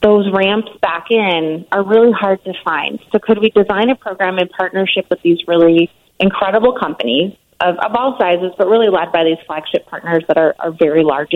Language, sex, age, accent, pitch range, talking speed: English, female, 30-49, American, 170-210 Hz, 200 wpm